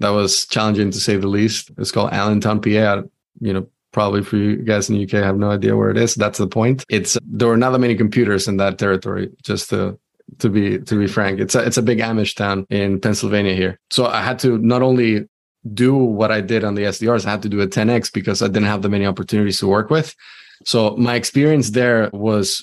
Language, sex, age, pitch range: English, male, 20-39, 100-115 Hz